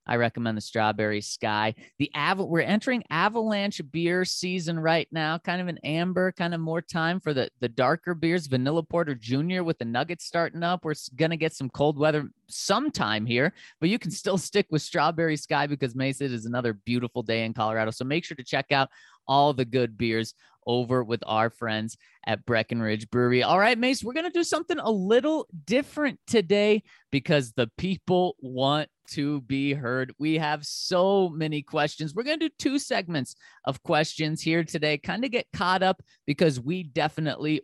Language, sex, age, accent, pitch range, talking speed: English, male, 30-49, American, 125-170 Hz, 190 wpm